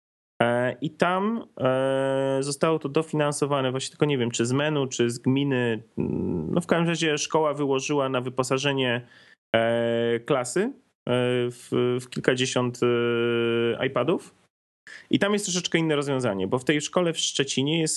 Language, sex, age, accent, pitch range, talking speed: Polish, male, 30-49, native, 125-150 Hz, 130 wpm